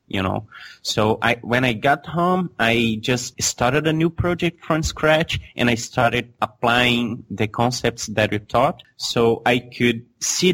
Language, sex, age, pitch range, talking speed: English, male, 30-49, 115-135 Hz, 165 wpm